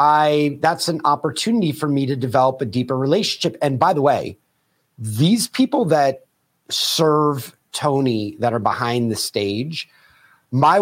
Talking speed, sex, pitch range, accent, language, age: 145 wpm, male, 120-150 Hz, American, English, 30-49